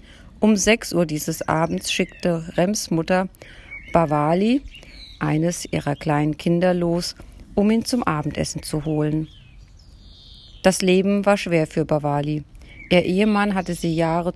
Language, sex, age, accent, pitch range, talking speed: German, female, 40-59, German, 160-210 Hz, 130 wpm